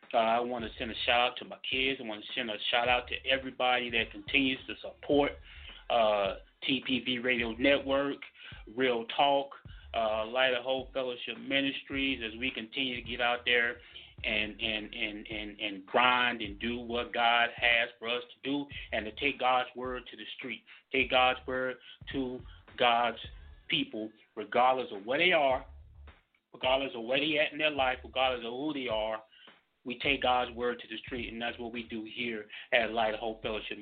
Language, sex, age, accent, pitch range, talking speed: English, male, 30-49, American, 110-135 Hz, 185 wpm